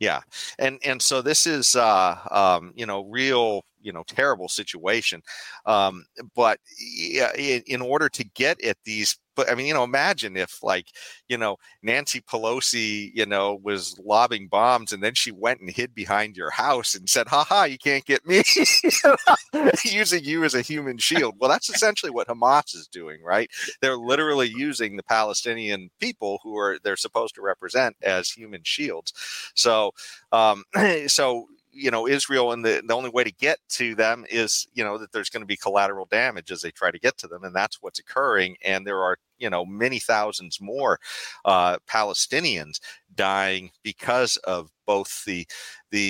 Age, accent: 40-59, American